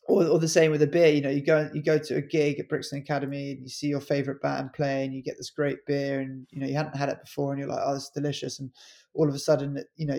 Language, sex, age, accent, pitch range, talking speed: English, male, 20-39, British, 135-150 Hz, 300 wpm